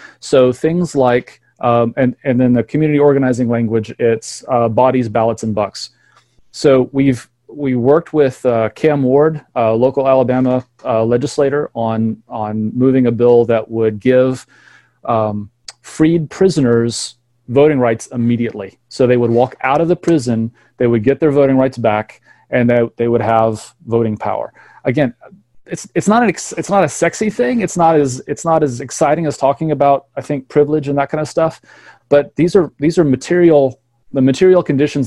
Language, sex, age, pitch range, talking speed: English, male, 30-49, 120-150 Hz, 180 wpm